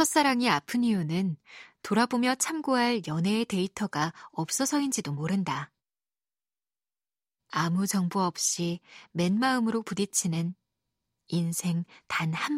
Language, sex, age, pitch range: Korean, female, 20-39, 170-245 Hz